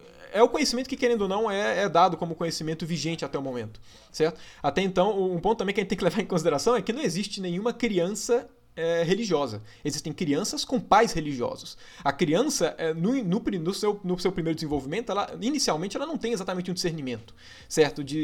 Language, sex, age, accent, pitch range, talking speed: Portuguese, male, 20-39, Brazilian, 155-240 Hz, 195 wpm